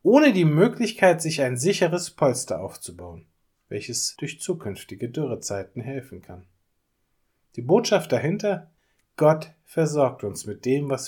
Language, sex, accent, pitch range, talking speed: German, male, German, 110-160 Hz, 125 wpm